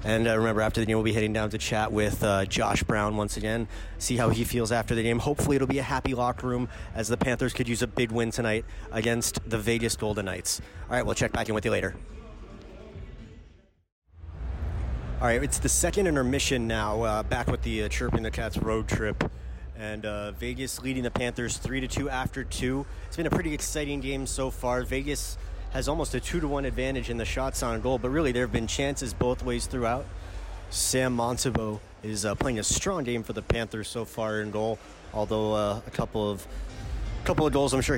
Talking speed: 215 wpm